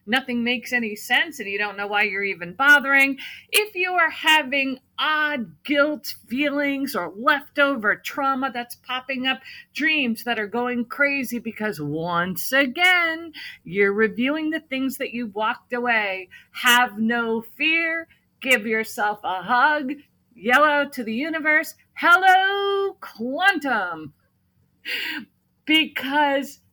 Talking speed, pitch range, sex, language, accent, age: 125 wpm, 220-295 Hz, female, English, American, 40-59